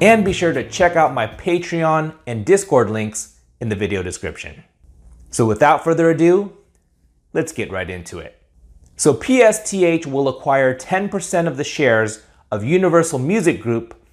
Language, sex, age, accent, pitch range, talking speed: English, male, 30-49, American, 115-175 Hz, 155 wpm